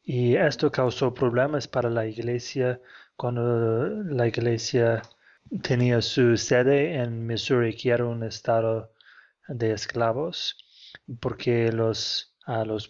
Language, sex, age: Spanish, male, 30-49